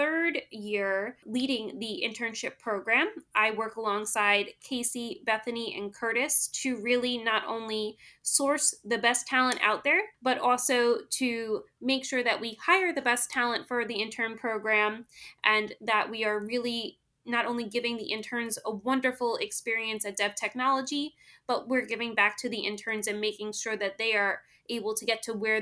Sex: female